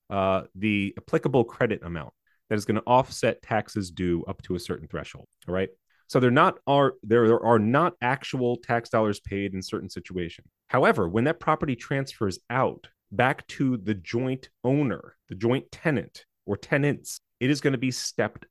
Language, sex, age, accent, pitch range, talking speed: English, male, 30-49, American, 100-135 Hz, 170 wpm